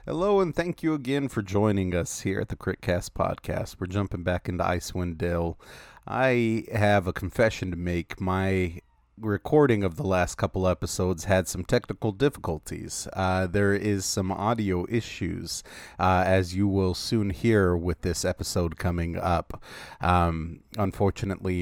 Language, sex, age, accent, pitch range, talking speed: English, male, 30-49, American, 85-105 Hz, 155 wpm